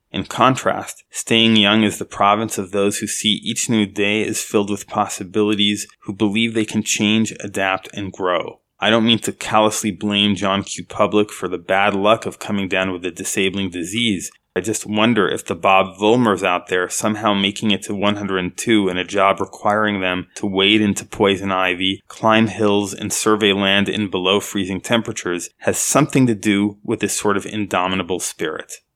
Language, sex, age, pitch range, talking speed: English, male, 20-39, 95-115 Hz, 185 wpm